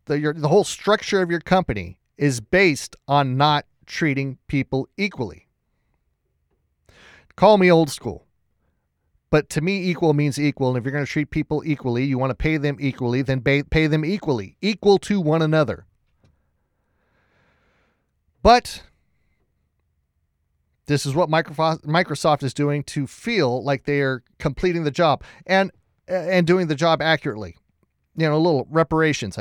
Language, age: English, 30-49